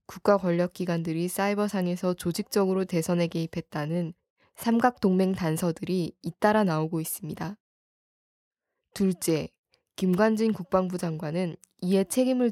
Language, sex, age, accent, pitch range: Korean, female, 20-39, native, 170-205 Hz